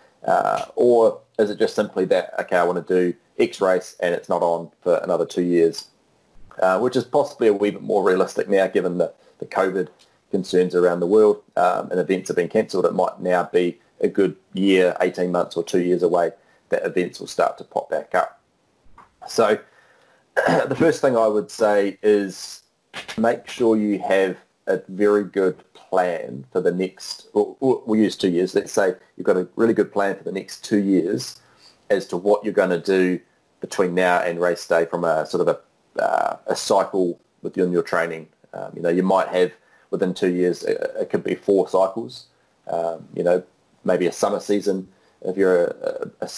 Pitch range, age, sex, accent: 90-105 Hz, 30-49, male, Australian